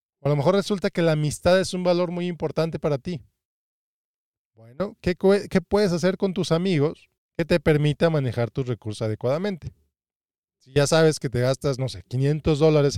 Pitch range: 130-165 Hz